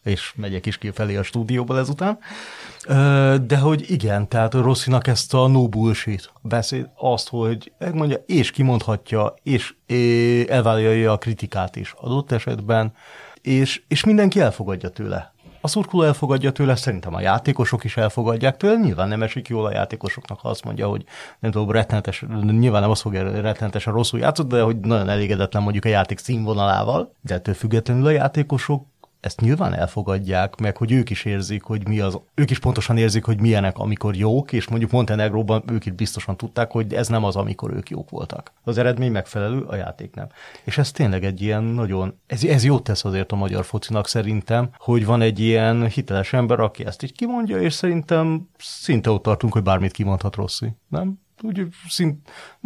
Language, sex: Hungarian, male